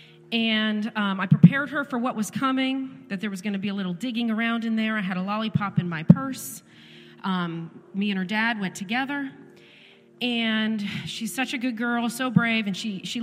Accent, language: American, English